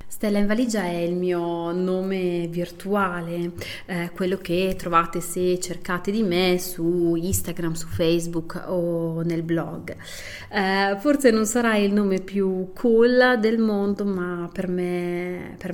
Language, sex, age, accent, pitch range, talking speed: Italian, female, 30-49, native, 175-210 Hz, 135 wpm